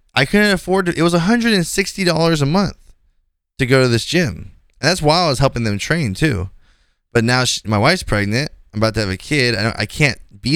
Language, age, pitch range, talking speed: English, 20-39, 90-115 Hz, 250 wpm